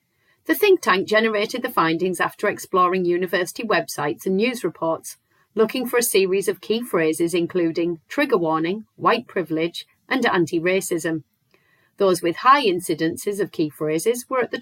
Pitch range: 175-235 Hz